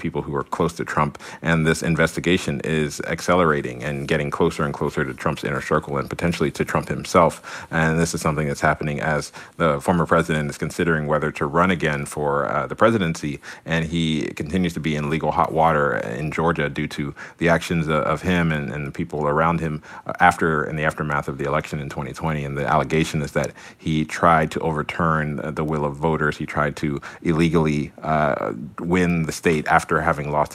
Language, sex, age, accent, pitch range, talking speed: English, male, 40-59, American, 75-85 Hz, 200 wpm